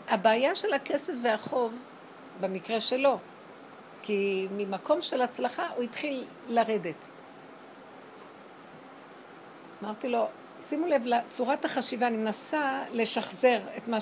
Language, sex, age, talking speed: Hebrew, female, 60-79, 105 wpm